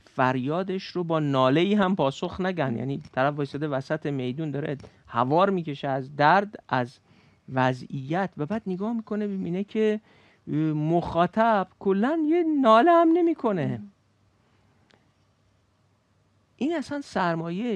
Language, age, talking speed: Persian, 50-69, 115 wpm